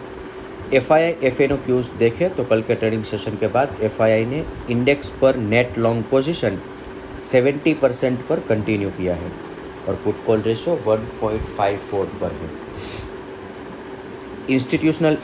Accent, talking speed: native, 125 wpm